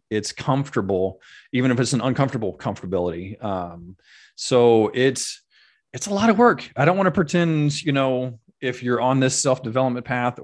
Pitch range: 105-130 Hz